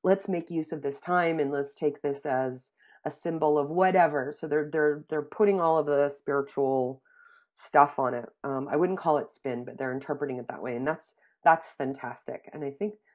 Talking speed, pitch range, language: 210 wpm, 140-190 Hz, English